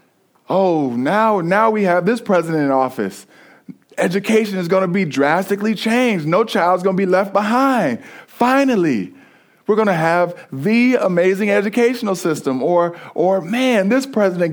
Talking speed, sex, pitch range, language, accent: 155 wpm, male, 165-215 Hz, English, American